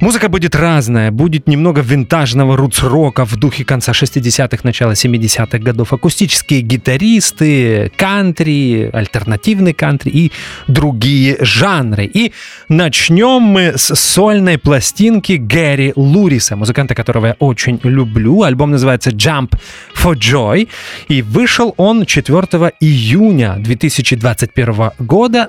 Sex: male